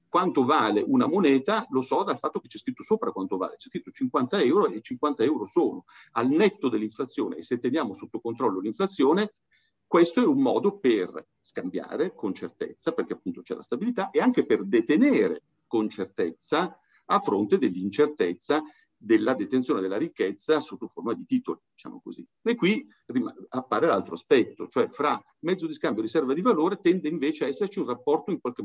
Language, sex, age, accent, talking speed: Italian, male, 50-69, native, 180 wpm